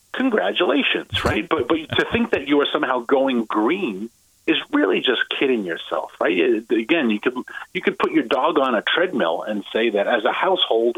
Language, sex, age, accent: Japanese, male, 40-59, American